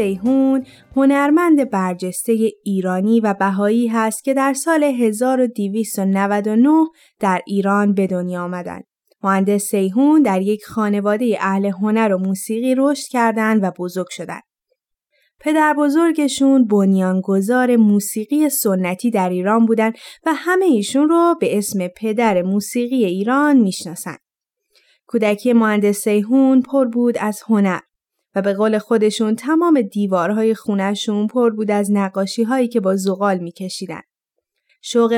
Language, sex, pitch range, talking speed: Persian, female, 195-265 Hz, 120 wpm